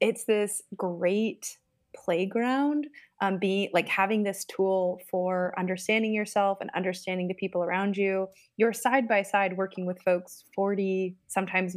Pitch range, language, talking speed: 180-215 Hz, English, 145 wpm